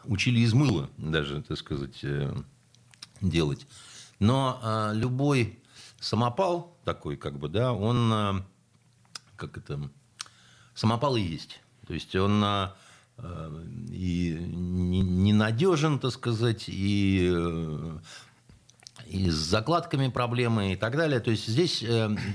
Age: 50-69